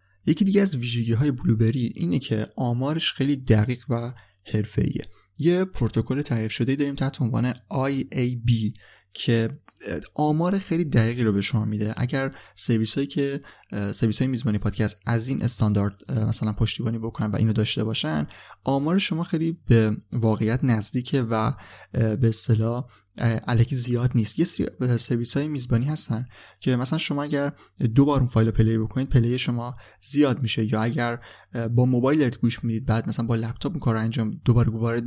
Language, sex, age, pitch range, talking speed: Persian, male, 20-39, 110-135 Hz, 155 wpm